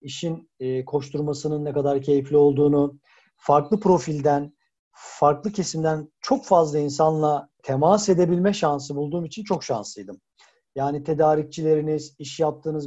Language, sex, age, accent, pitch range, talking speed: Turkish, male, 50-69, native, 145-185 Hz, 110 wpm